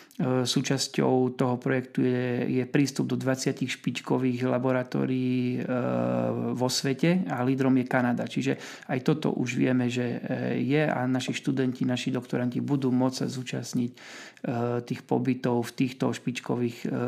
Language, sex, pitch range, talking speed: Slovak, male, 120-135 Hz, 135 wpm